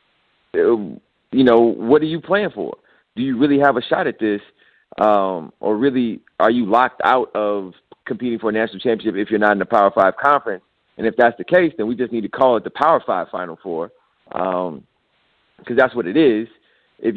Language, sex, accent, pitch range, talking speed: English, male, American, 115-150 Hz, 210 wpm